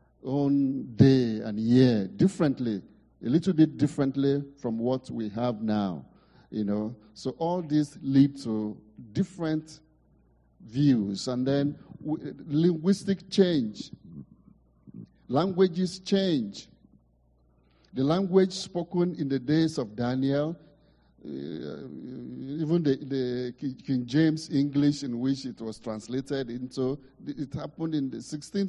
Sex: male